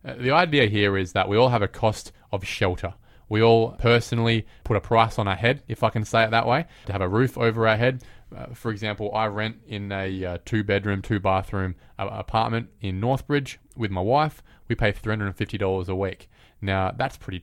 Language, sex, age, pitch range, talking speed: English, male, 20-39, 95-115 Hz, 205 wpm